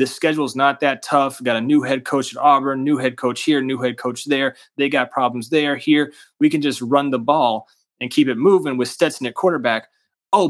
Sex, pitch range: male, 120-145 Hz